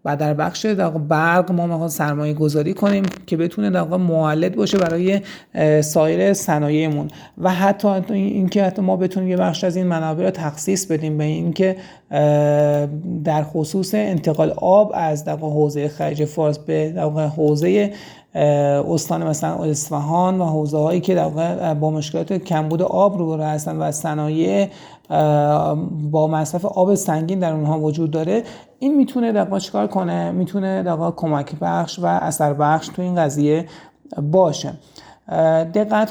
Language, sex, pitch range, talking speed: Persian, male, 155-185 Hz, 140 wpm